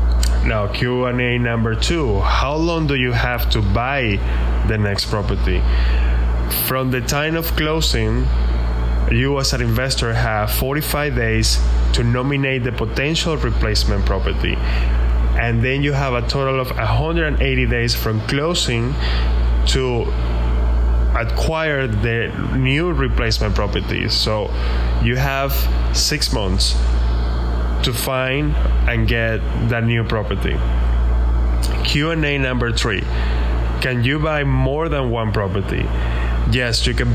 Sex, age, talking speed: male, 10-29, 120 wpm